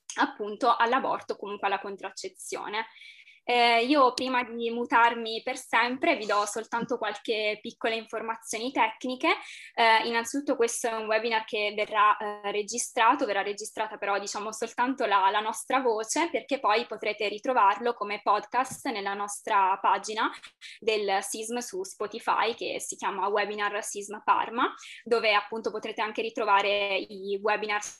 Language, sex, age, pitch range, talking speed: Italian, female, 20-39, 210-245 Hz, 135 wpm